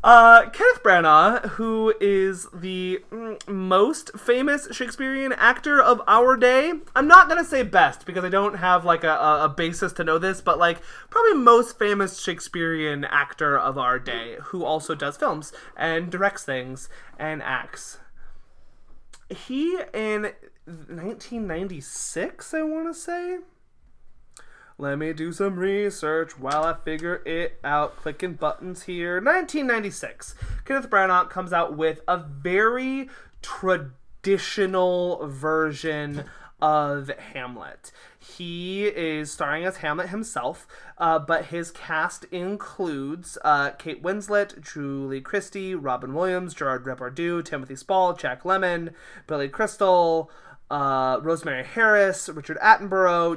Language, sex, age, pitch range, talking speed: English, male, 20-39, 155-215 Hz, 125 wpm